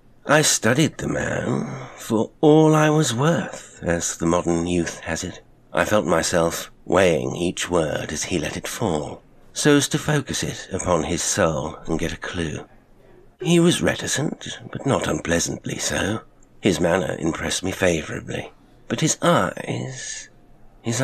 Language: English